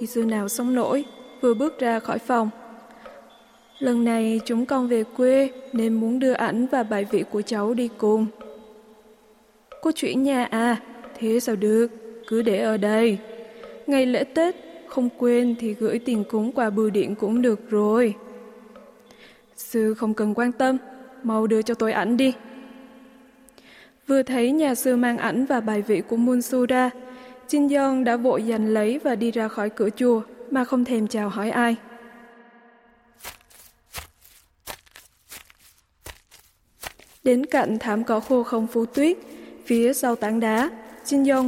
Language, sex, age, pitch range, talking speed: Vietnamese, female, 20-39, 220-255 Hz, 155 wpm